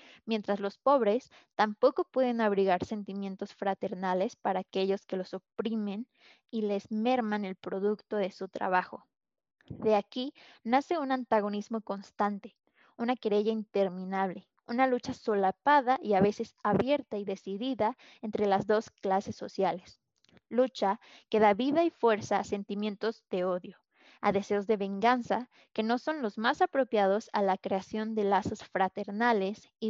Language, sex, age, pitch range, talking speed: Spanish, female, 20-39, 195-240 Hz, 145 wpm